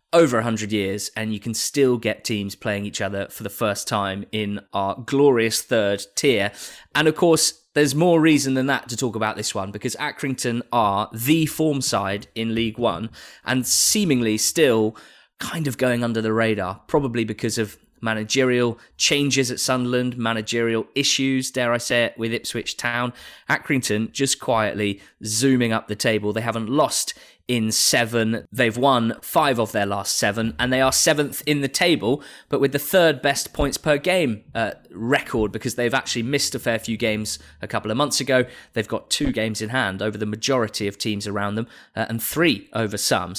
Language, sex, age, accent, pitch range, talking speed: English, male, 20-39, British, 110-135 Hz, 185 wpm